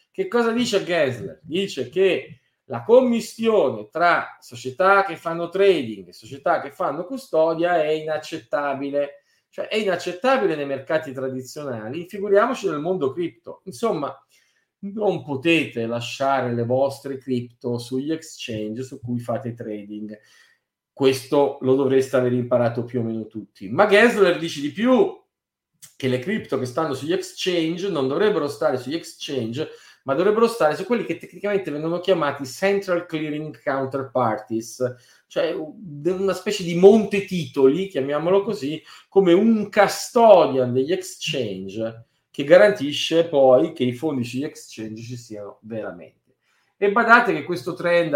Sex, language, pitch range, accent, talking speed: male, Italian, 130-195 Hz, native, 135 wpm